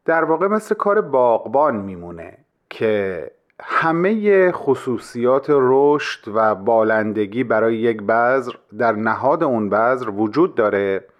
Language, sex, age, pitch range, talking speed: Persian, male, 30-49, 110-160 Hz, 115 wpm